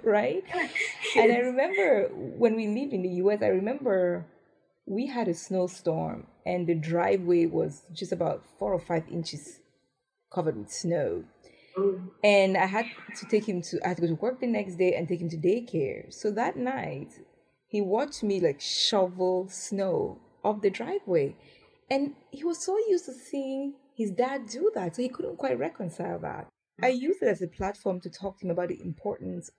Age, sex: 20-39, female